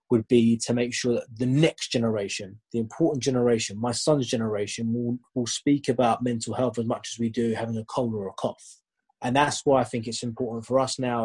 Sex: male